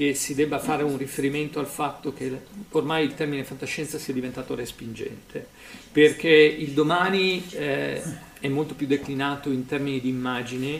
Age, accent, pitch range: 50-69, native, 135-160 Hz